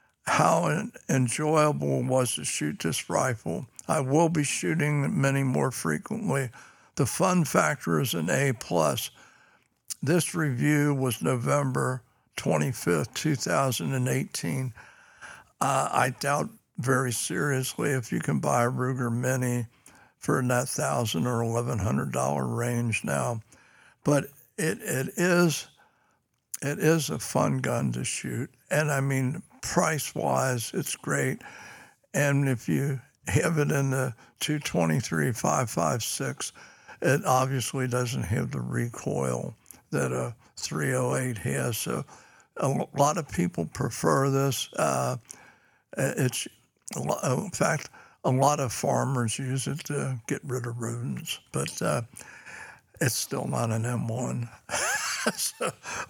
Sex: male